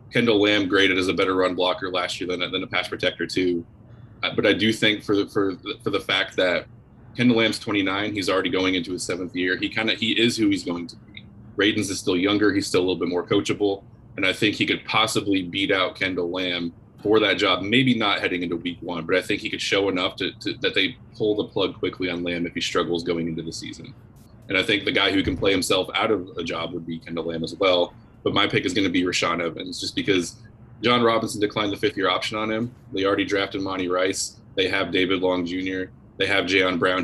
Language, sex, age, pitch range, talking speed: English, male, 20-39, 90-110 Hz, 255 wpm